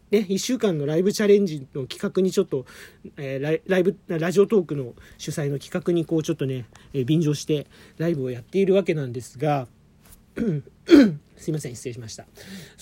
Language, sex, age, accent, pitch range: Japanese, male, 40-59, native, 145-210 Hz